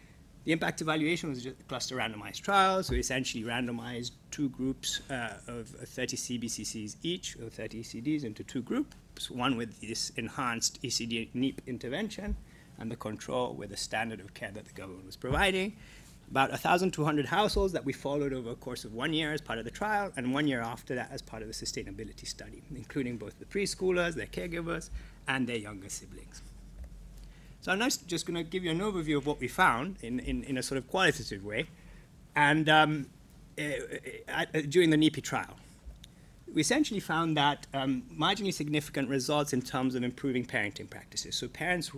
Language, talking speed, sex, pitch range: English, 175 wpm, male, 125-165 Hz